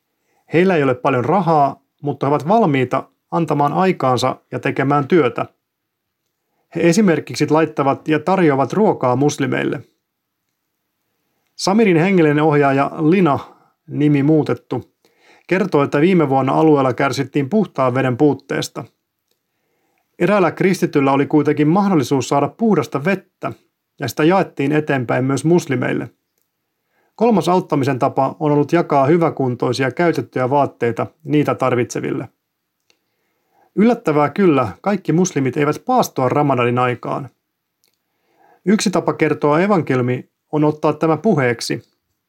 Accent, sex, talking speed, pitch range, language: native, male, 110 wpm, 140-175 Hz, Finnish